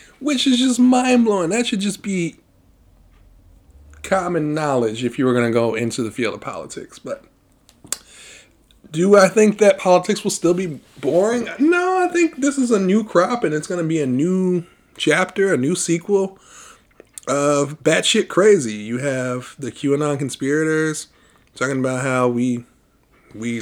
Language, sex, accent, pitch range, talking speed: English, male, American, 120-175 Hz, 160 wpm